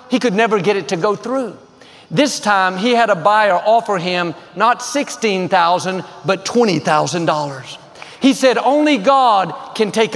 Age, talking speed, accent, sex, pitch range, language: 50-69, 155 wpm, American, male, 175-250 Hz, English